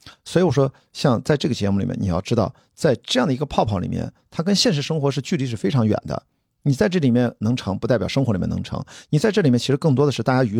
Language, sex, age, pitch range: Chinese, male, 50-69, 110-145 Hz